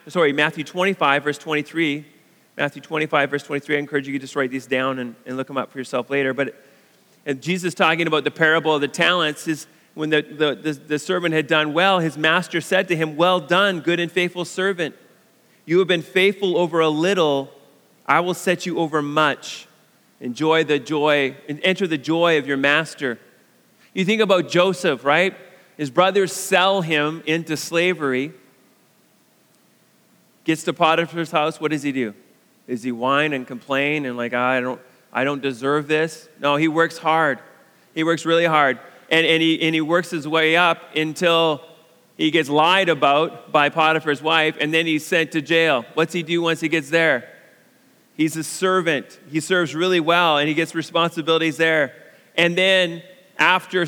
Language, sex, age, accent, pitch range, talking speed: English, male, 30-49, American, 150-170 Hz, 185 wpm